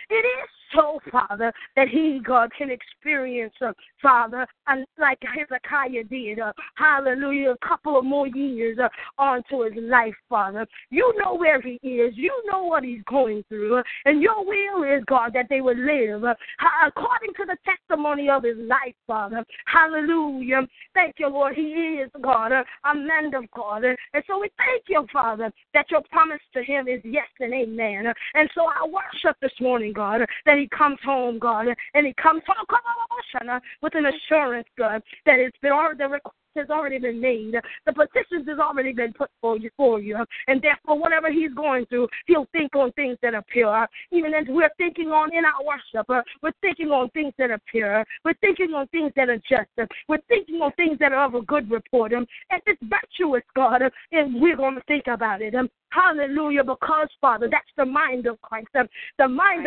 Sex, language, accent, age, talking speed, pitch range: female, English, American, 20-39, 185 wpm, 245-315 Hz